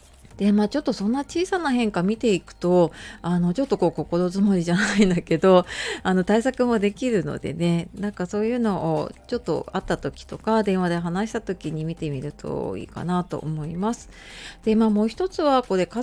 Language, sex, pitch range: Japanese, female, 160-230 Hz